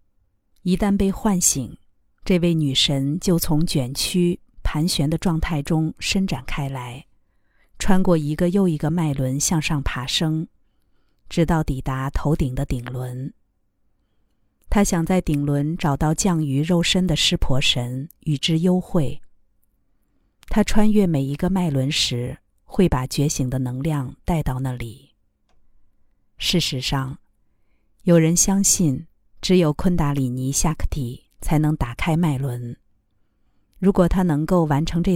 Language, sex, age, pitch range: Chinese, female, 50-69, 125-170 Hz